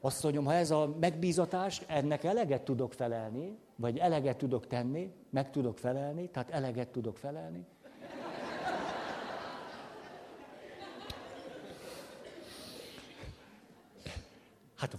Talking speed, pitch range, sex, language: 90 wpm, 130-190 Hz, male, Hungarian